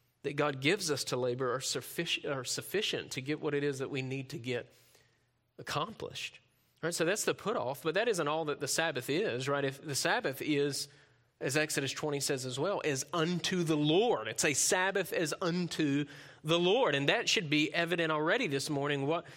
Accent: American